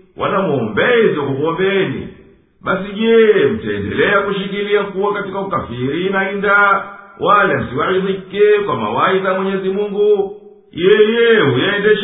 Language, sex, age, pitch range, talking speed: Swahili, male, 50-69, 185-205 Hz, 95 wpm